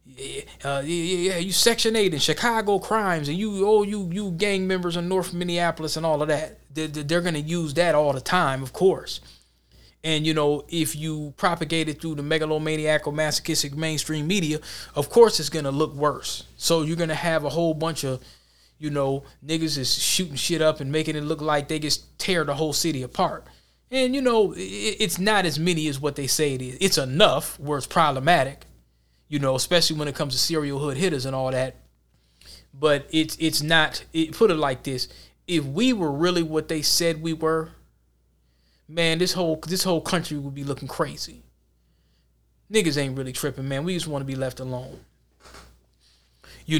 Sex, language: male, English